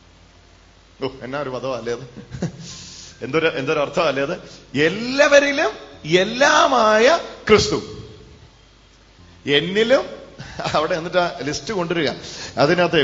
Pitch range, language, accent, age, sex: 145-205 Hz, English, Indian, 40-59, male